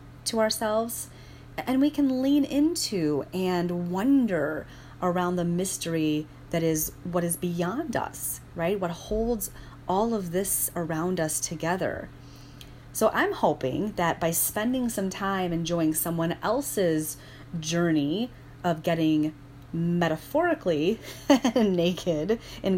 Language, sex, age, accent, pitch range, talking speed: English, female, 30-49, American, 155-215 Hz, 115 wpm